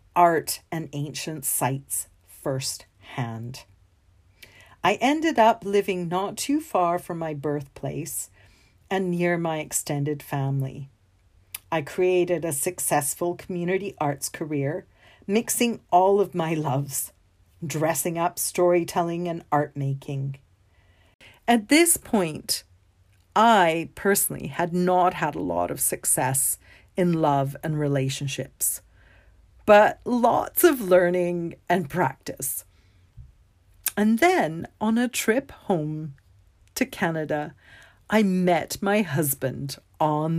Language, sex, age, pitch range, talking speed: English, female, 50-69, 130-180 Hz, 110 wpm